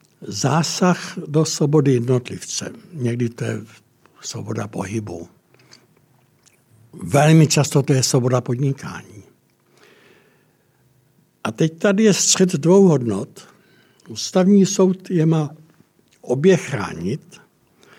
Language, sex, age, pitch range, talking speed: Czech, male, 60-79, 125-170 Hz, 95 wpm